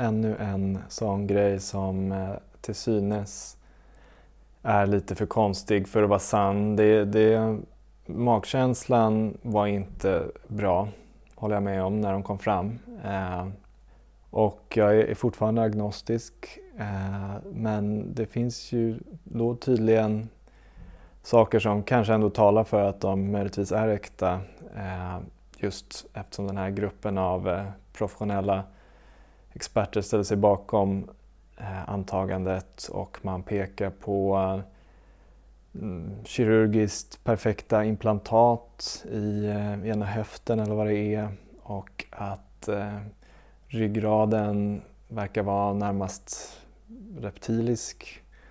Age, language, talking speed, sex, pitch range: 20-39, Swedish, 110 wpm, male, 95-110 Hz